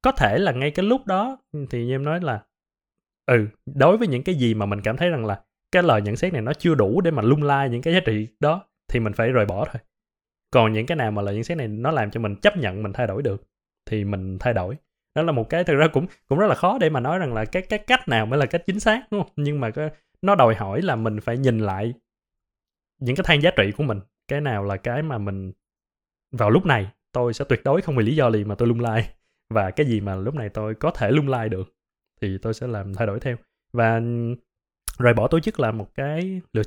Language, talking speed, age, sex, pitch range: Vietnamese, 270 wpm, 20-39, male, 110-155 Hz